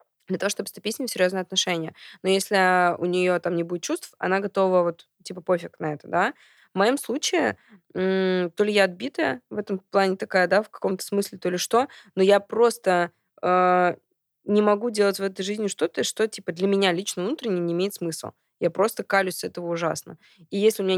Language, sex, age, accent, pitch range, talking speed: Russian, female, 20-39, native, 180-205 Hz, 210 wpm